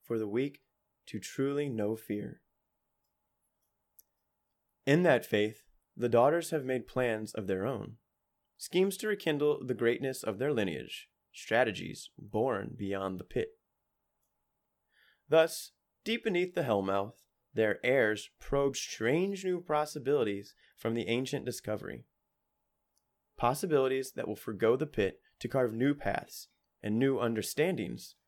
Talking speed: 125 wpm